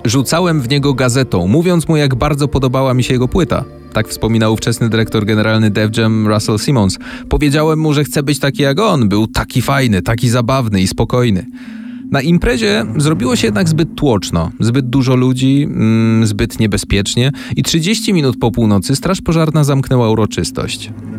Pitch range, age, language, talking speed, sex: 105-145 Hz, 30-49, Polish, 165 wpm, male